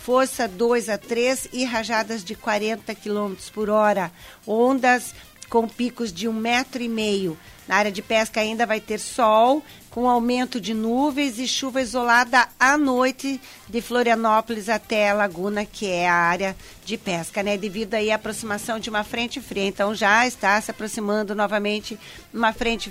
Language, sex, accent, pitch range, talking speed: English, female, Brazilian, 210-240 Hz, 165 wpm